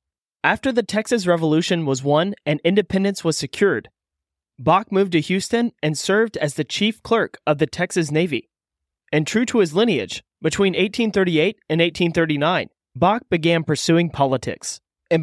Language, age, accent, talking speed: English, 30-49, American, 150 wpm